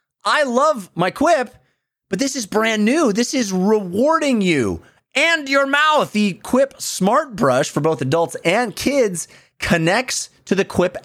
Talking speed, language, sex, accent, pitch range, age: 155 wpm, English, male, American, 165-245 Hz, 30-49